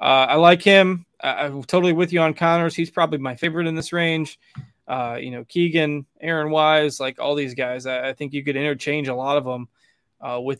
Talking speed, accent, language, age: 225 wpm, American, English, 20-39